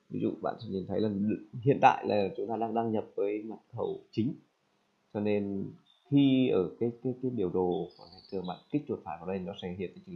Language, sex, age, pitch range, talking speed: Vietnamese, male, 20-39, 100-110 Hz, 240 wpm